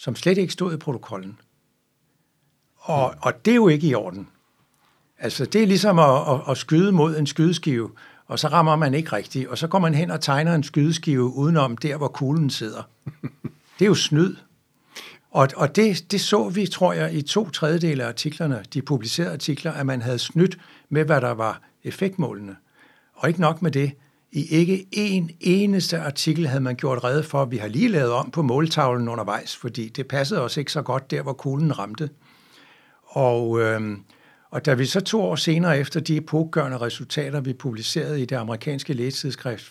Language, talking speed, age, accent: Danish, 190 wpm, 60-79, native